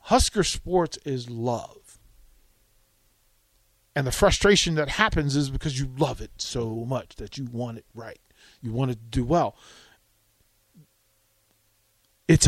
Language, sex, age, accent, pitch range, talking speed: English, male, 40-59, American, 110-180 Hz, 135 wpm